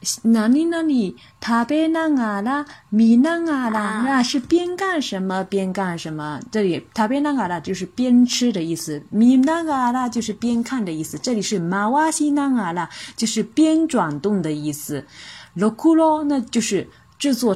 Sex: female